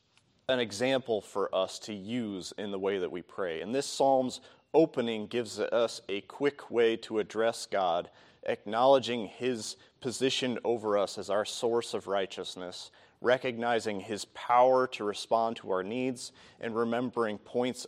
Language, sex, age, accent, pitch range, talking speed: English, male, 30-49, American, 100-125 Hz, 150 wpm